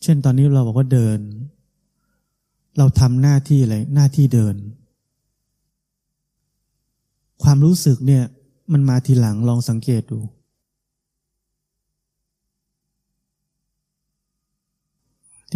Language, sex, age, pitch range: Thai, male, 20-39, 125-150 Hz